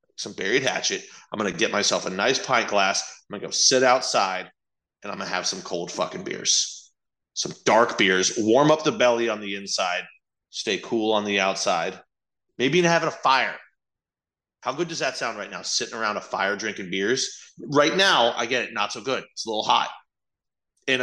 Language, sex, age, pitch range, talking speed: English, male, 30-49, 120-175 Hz, 200 wpm